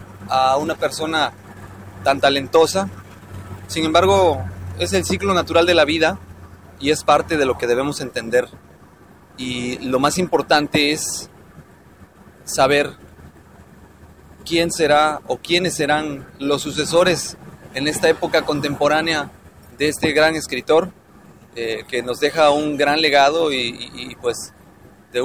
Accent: Mexican